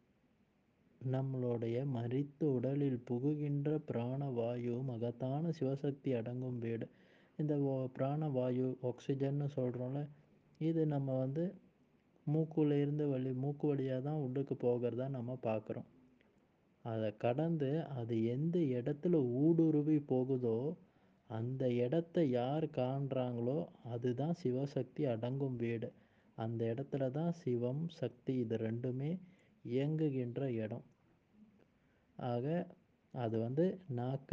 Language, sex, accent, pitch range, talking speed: Tamil, male, native, 120-150 Hz, 95 wpm